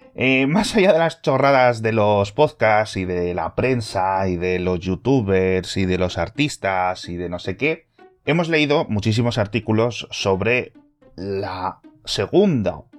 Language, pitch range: Spanish, 90-130 Hz